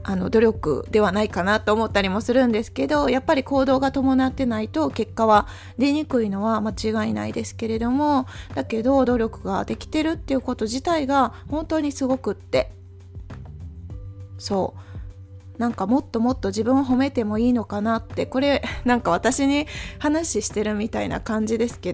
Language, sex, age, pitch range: Japanese, female, 20-39, 195-275 Hz